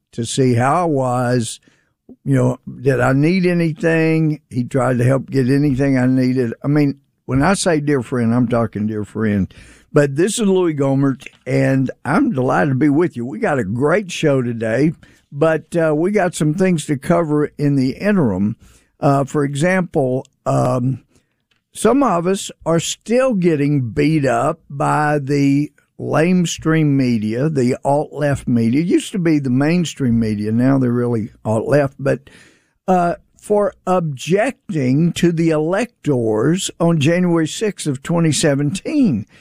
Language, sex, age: English, male, 50-69